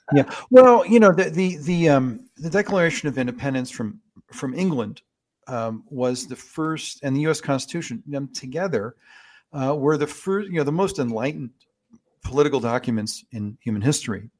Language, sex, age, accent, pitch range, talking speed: English, male, 50-69, American, 110-135 Hz, 170 wpm